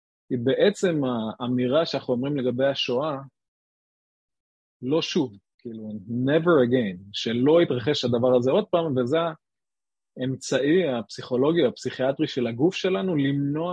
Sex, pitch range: male, 115-150 Hz